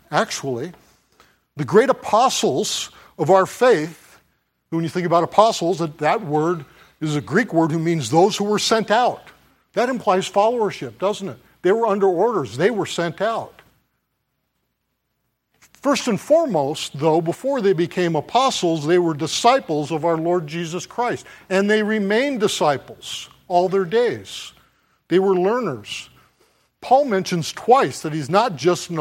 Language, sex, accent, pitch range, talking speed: English, male, American, 145-200 Hz, 150 wpm